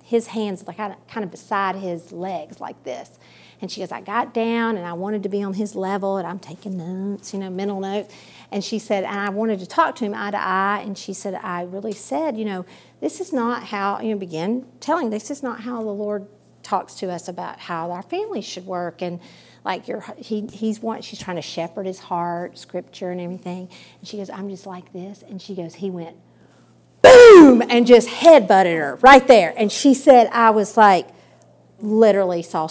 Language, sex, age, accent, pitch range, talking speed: English, female, 40-59, American, 185-240 Hz, 220 wpm